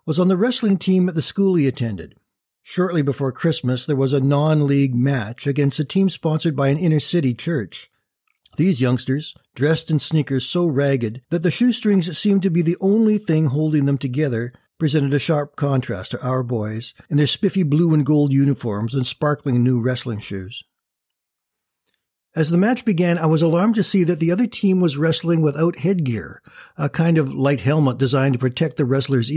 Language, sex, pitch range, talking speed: English, male, 130-170 Hz, 185 wpm